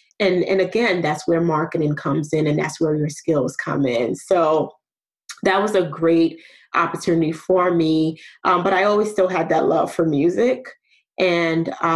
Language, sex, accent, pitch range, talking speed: English, female, American, 160-185 Hz, 170 wpm